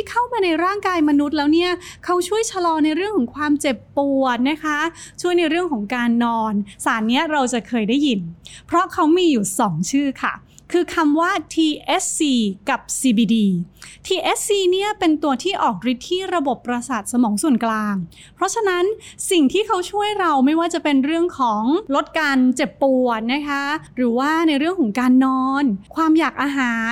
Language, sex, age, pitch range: Thai, female, 20-39, 245-330 Hz